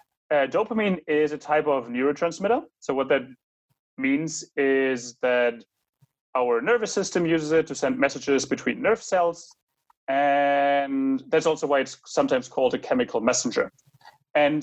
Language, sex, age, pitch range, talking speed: English, male, 30-49, 135-180 Hz, 145 wpm